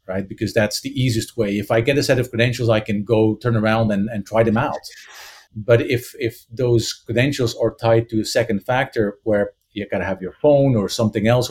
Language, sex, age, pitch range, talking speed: English, male, 40-59, 110-140 Hz, 230 wpm